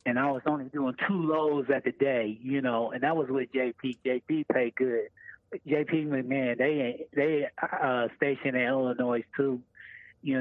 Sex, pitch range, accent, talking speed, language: male, 120-140 Hz, American, 175 wpm, English